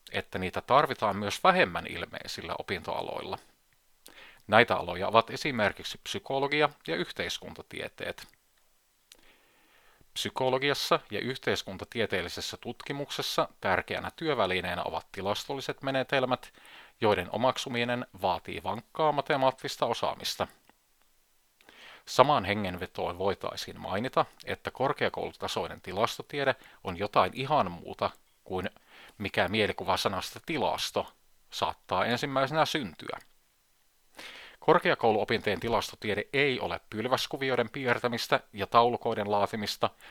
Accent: native